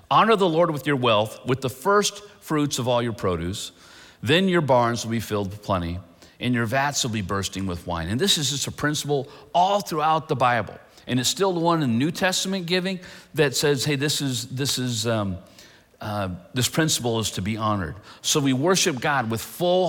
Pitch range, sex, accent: 110-155 Hz, male, American